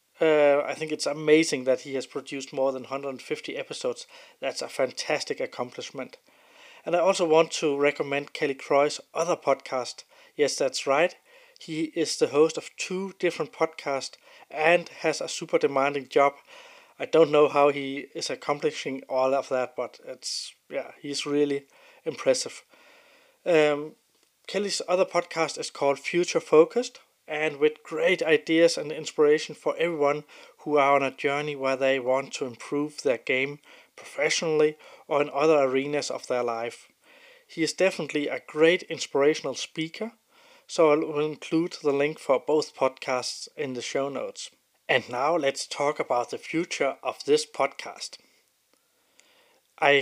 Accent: Danish